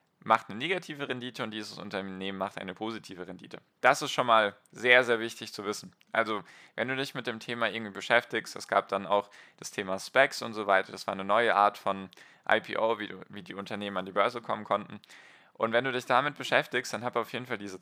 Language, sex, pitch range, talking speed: German, male, 105-125 Hz, 225 wpm